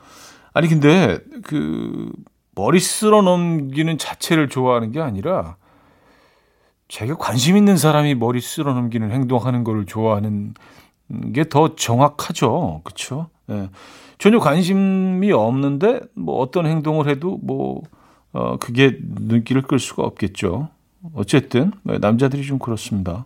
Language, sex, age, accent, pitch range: Korean, male, 40-59, native, 115-160 Hz